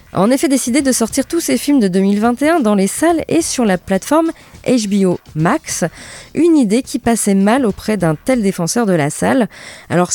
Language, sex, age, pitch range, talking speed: French, female, 20-39, 175-250 Hz, 195 wpm